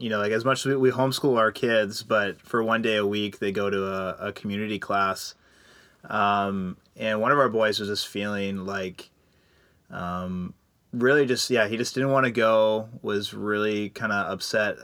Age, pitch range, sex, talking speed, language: 30-49, 100-115 Hz, male, 195 wpm, English